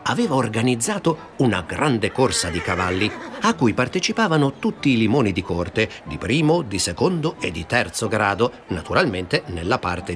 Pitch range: 100-155 Hz